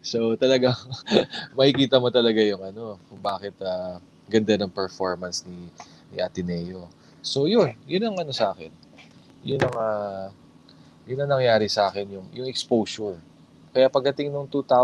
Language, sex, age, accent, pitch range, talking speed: Filipino, male, 20-39, native, 100-120 Hz, 140 wpm